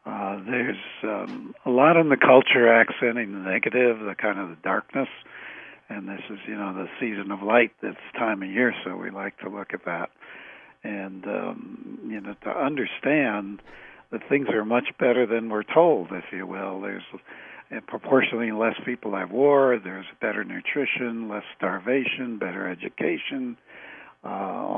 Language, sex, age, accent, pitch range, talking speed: English, male, 60-79, American, 105-125 Hz, 160 wpm